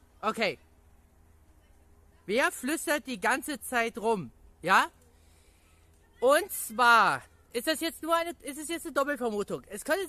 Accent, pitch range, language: German, 180-290 Hz, German